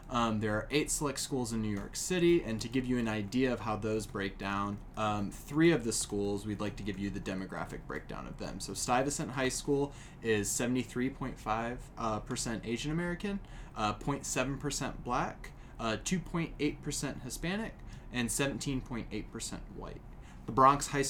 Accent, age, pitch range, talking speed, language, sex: American, 20-39, 110-145 Hz, 160 wpm, English, male